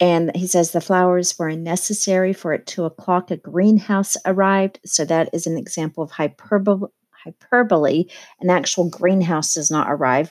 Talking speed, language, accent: 165 wpm, English, American